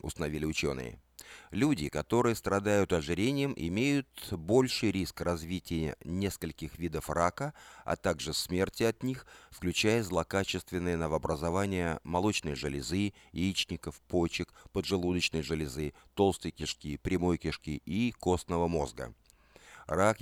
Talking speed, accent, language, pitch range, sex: 105 wpm, native, Russian, 85-110 Hz, male